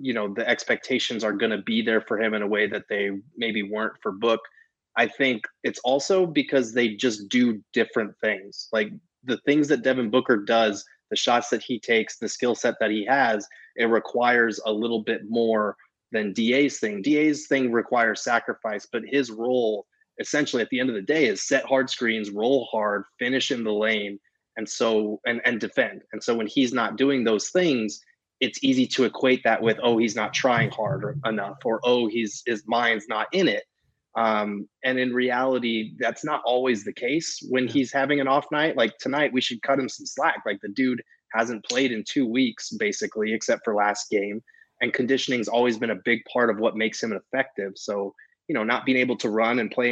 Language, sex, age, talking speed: English, male, 20-39, 205 wpm